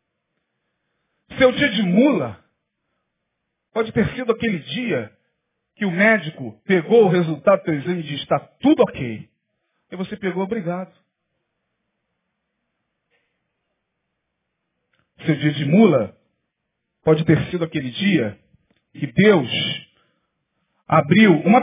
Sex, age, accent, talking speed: male, 40-59, Brazilian, 110 wpm